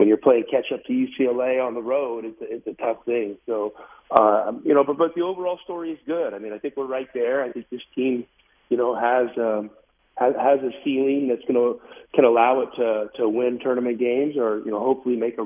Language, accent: English, American